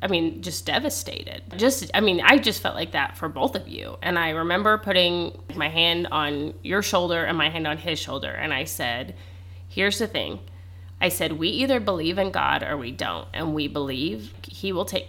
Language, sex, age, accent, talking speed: English, female, 30-49, American, 210 wpm